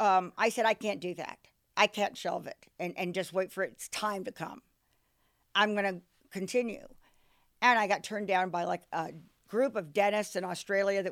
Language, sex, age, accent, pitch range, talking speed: English, female, 50-69, American, 190-230 Hz, 210 wpm